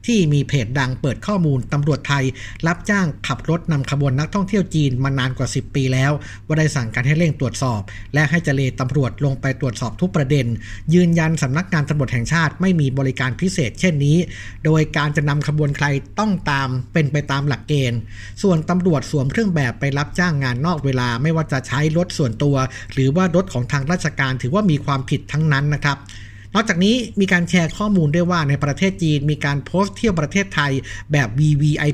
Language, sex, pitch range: Thai, male, 135-165 Hz